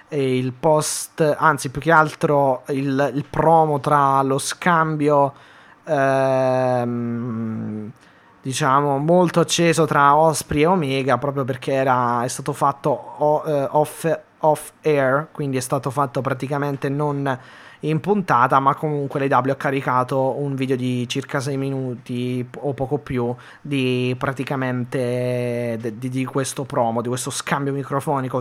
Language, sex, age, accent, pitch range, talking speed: Italian, male, 20-39, native, 130-150 Hz, 130 wpm